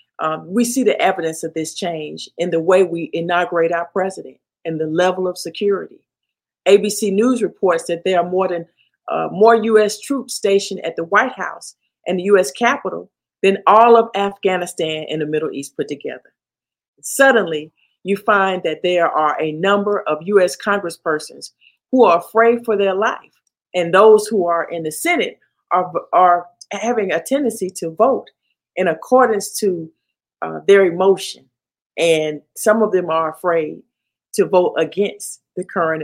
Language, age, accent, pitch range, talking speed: English, 50-69, American, 165-215 Hz, 165 wpm